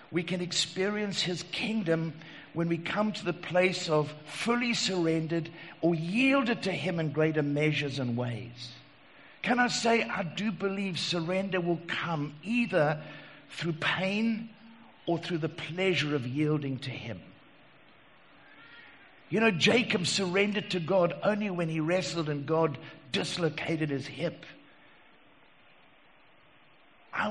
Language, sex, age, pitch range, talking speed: English, male, 60-79, 150-205 Hz, 130 wpm